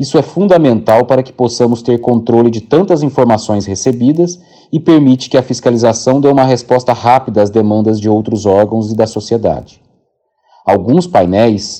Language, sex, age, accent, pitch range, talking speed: Portuguese, male, 40-59, Brazilian, 110-130 Hz, 160 wpm